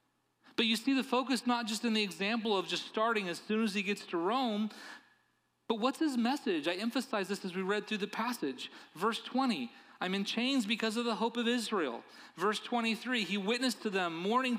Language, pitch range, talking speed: English, 150-230 Hz, 210 wpm